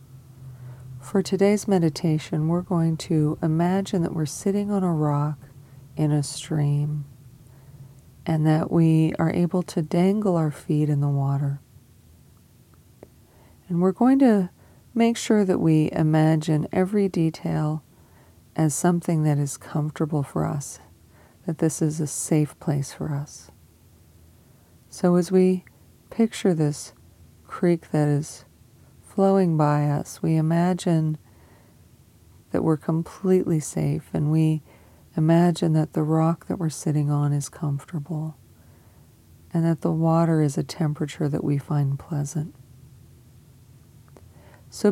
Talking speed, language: 125 wpm, English